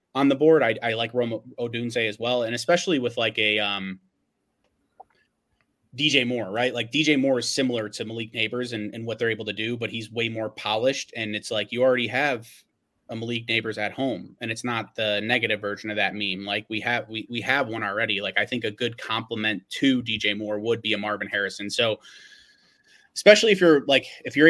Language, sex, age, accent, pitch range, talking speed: English, male, 30-49, American, 110-130 Hz, 215 wpm